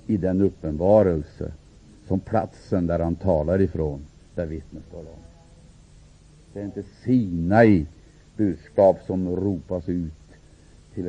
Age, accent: 60-79, Norwegian